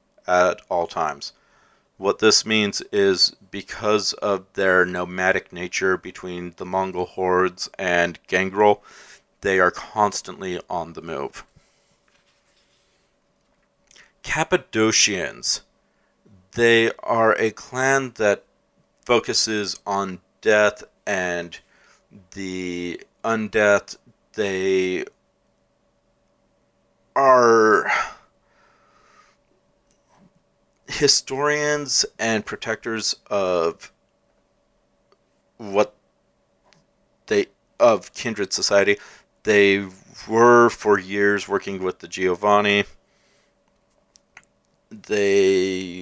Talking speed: 75 wpm